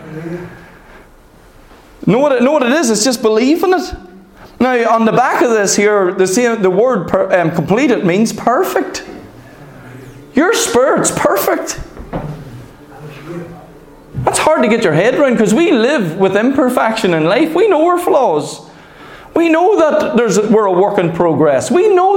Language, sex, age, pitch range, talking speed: English, male, 30-49, 185-280 Hz, 160 wpm